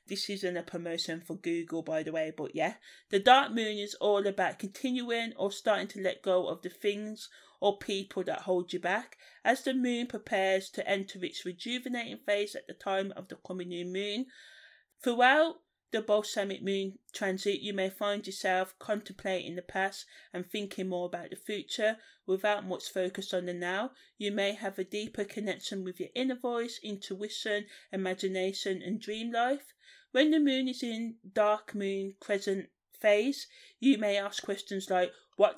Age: 30-49